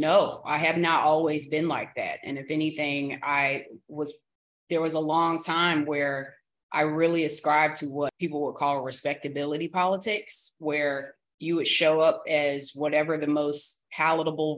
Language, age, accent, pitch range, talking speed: English, 30-49, American, 145-165 Hz, 160 wpm